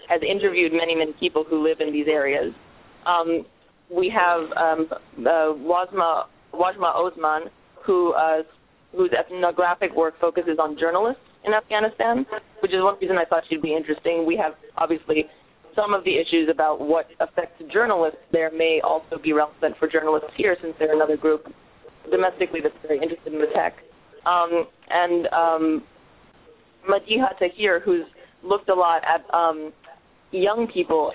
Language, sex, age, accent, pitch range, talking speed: English, female, 20-39, American, 155-180 Hz, 150 wpm